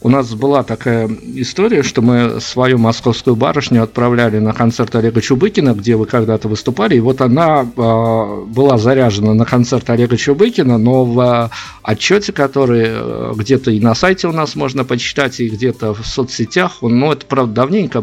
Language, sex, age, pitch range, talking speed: Russian, male, 50-69, 115-140 Hz, 160 wpm